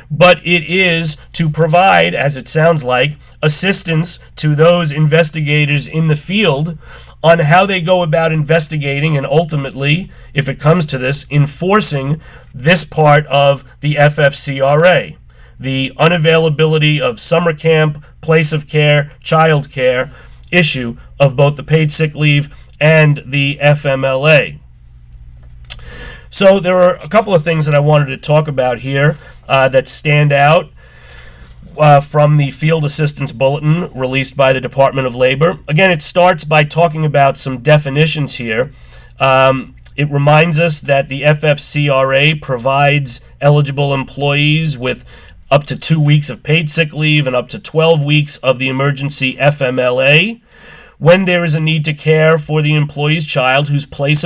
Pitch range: 135-160 Hz